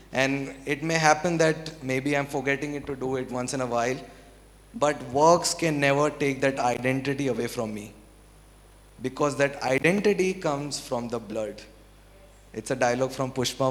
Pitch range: 125-155 Hz